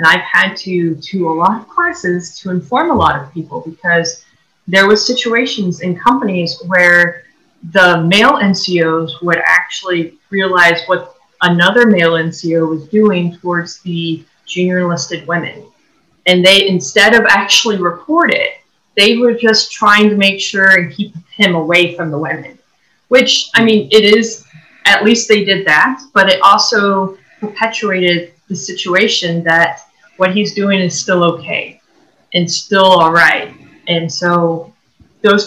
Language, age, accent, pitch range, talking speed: English, 30-49, American, 170-205 Hz, 150 wpm